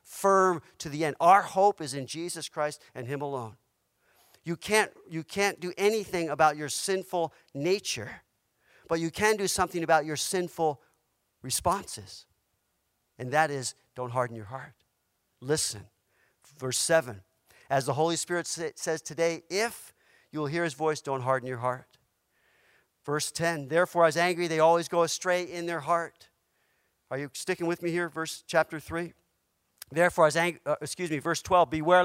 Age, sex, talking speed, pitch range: 50-69, male, 165 wpm, 145-180 Hz